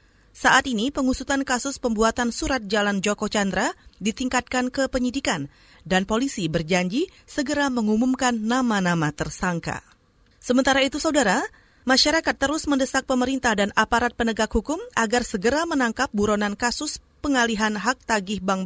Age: 30-49